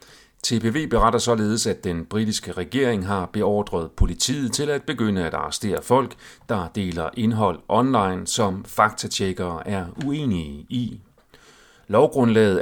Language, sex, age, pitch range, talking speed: Danish, male, 40-59, 90-120 Hz, 125 wpm